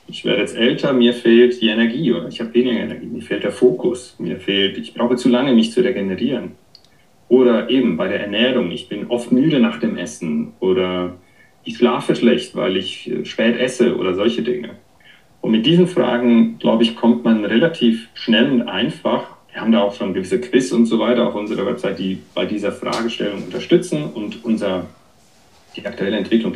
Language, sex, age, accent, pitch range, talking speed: German, male, 40-59, German, 100-120 Hz, 190 wpm